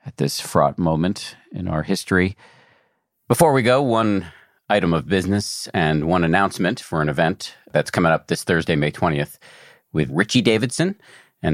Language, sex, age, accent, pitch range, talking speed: English, male, 50-69, American, 80-100 Hz, 160 wpm